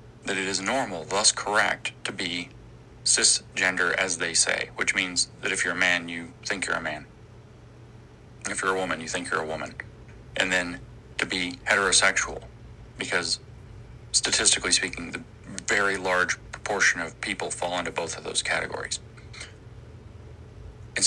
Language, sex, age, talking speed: English, male, 40-59, 155 wpm